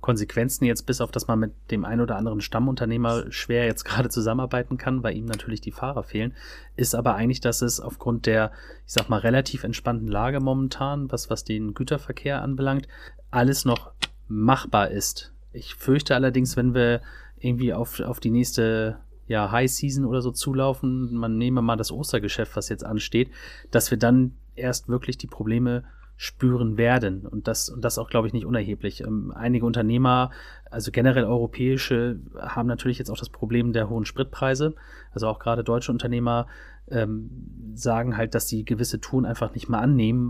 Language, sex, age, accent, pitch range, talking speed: German, male, 30-49, German, 115-130 Hz, 175 wpm